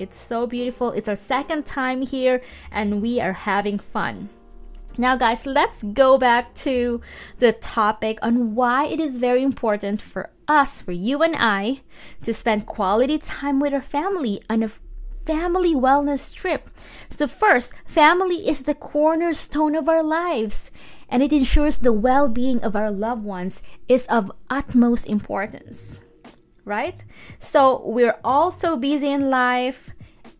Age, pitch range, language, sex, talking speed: 20-39, 225-295 Hz, English, female, 150 wpm